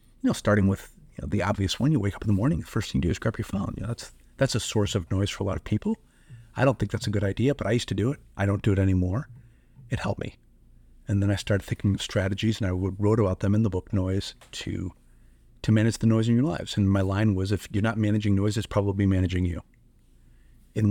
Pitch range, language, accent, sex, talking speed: 95-115 Hz, English, American, male, 275 wpm